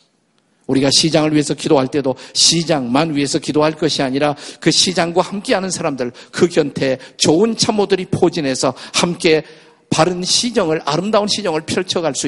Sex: male